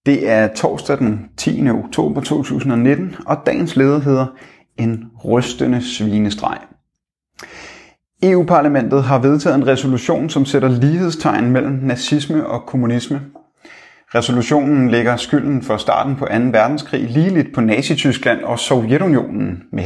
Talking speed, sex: 120 wpm, male